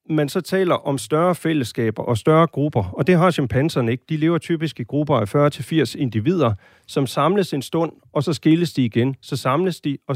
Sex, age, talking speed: male, 40-59, 205 wpm